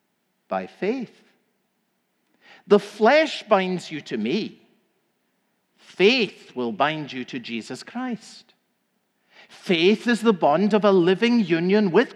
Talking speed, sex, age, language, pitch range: 120 wpm, male, 50-69, English, 140-210 Hz